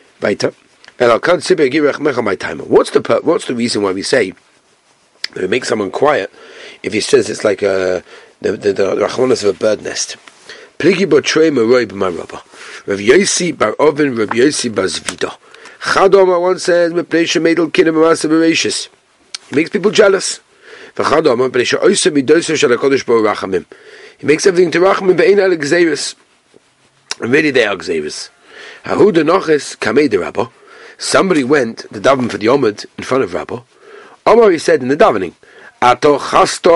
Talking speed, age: 100 wpm, 40-59